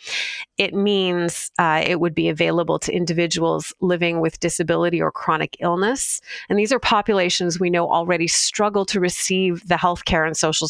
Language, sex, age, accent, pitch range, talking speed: English, female, 30-49, American, 170-205 Hz, 170 wpm